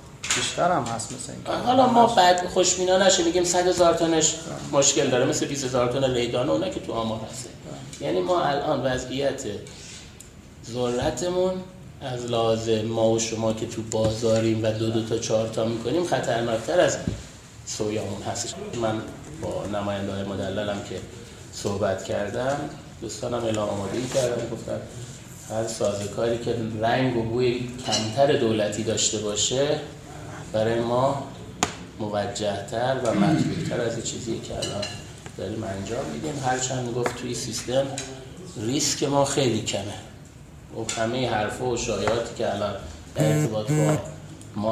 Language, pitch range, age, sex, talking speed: Persian, 110-140 Hz, 30-49, male, 135 wpm